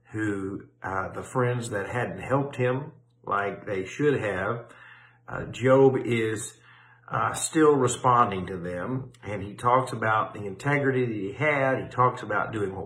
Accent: American